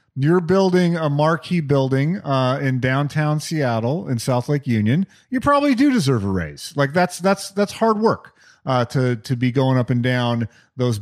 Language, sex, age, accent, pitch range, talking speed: English, male, 40-59, American, 120-170 Hz, 185 wpm